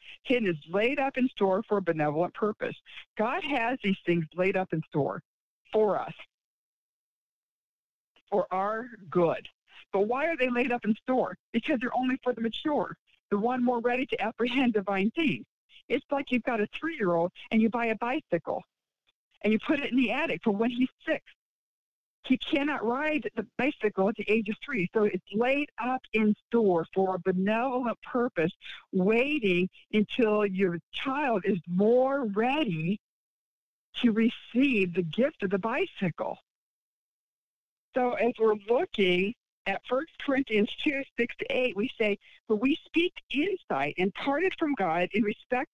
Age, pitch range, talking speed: 60-79, 190-255 Hz, 165 wpm